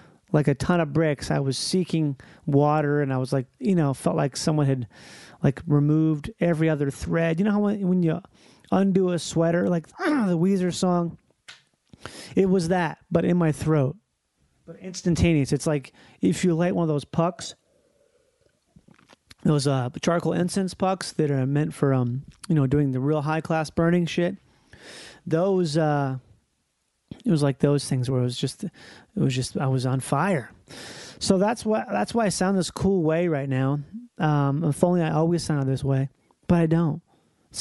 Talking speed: 185 wpm